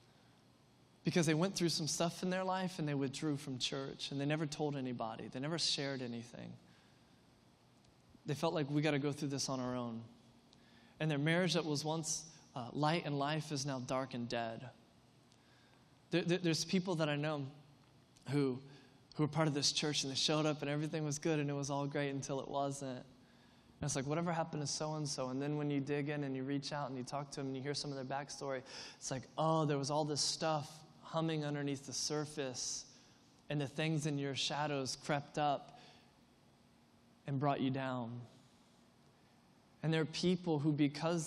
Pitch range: 135-155 Hz